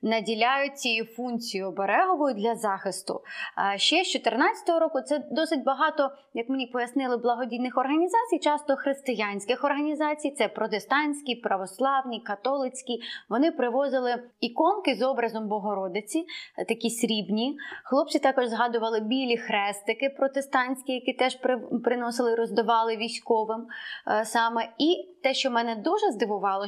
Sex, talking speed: female, 115 wpm